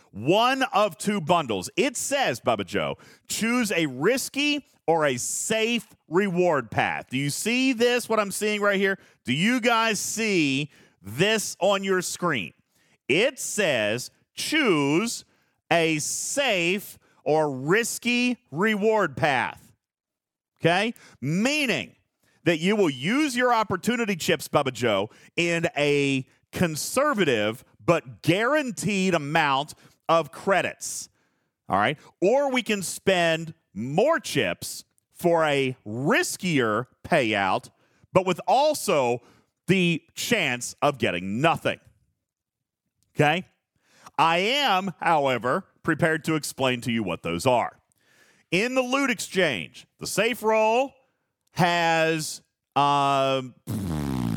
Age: 40-59